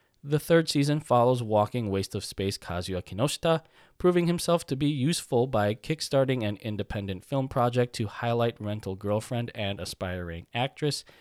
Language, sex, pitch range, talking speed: English, male, 100-145 Hz, 150 wpm